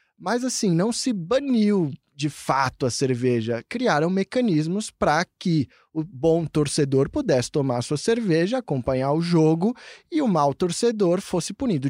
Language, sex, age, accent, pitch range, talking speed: Portuguese, male, 20-39, Brazilian, 140-195 Hz, 145 wpm